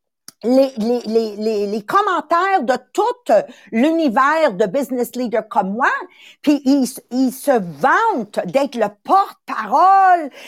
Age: 50-69